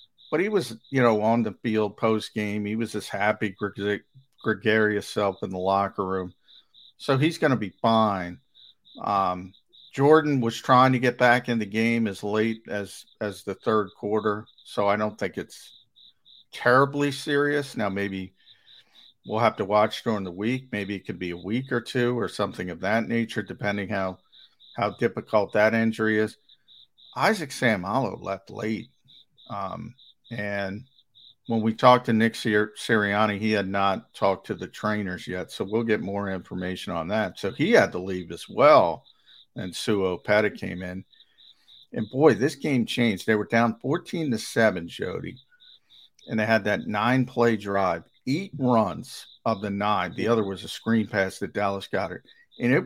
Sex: male